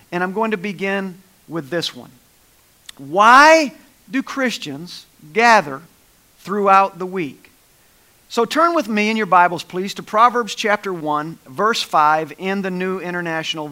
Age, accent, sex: 50-69, American, male